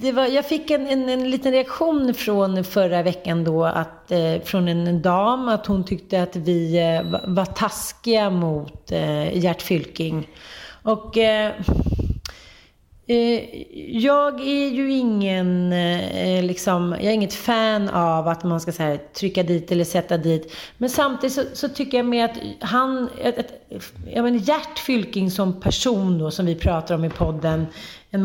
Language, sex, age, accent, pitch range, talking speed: Swedish, female, 30-49, native, 170-225 Hz, 160 wpm